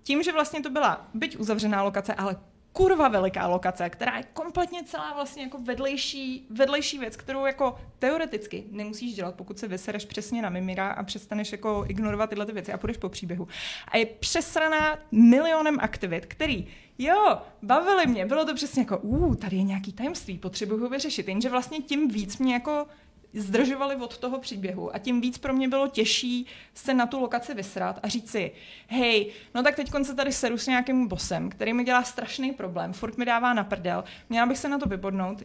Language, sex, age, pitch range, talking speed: Czech, female, 20-39, 210-275 Hz, 195 wpm